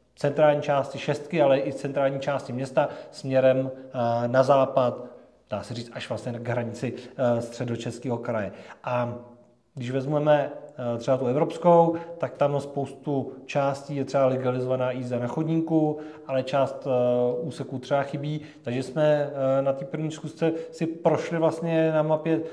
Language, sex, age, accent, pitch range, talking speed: Czech, male, 40-59, native, 135-160 Hz, 140 wpm